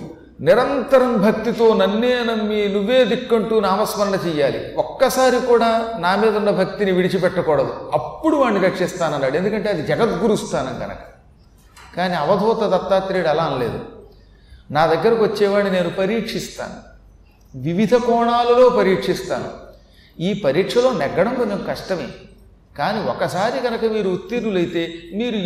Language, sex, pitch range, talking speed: Telugu, male, 185-240 Hz, 115 wpm